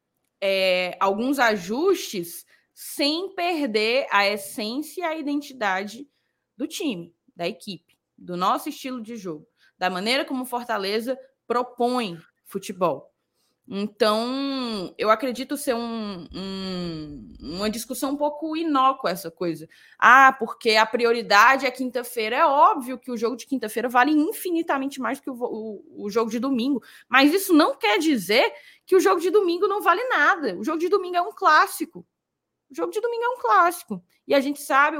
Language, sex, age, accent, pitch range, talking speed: Portuguese, female, 20-39, Brazilian, 215-330 Hz, 160 wpm